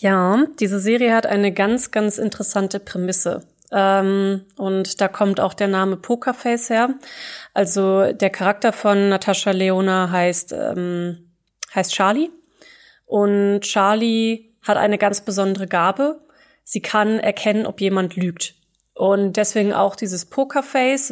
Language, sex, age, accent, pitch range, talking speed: German, female, 20-39, German, 195-230 Hz, 130 wpm